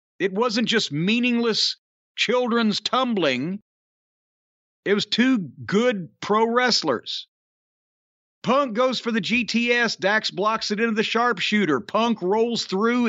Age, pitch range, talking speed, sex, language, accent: 50-69, 180-220 Hz, 120 wpm, male, English, American